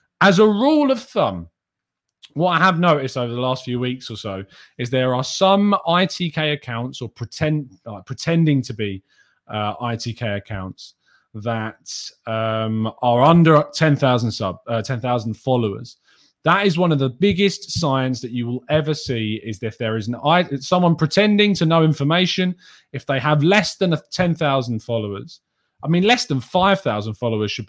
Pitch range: 110-155 Hz